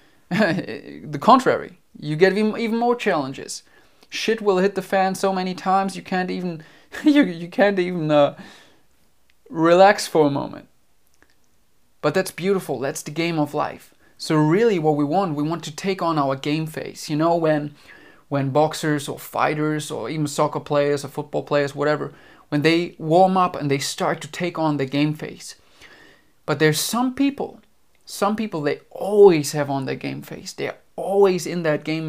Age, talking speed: 30-49, 180 wpm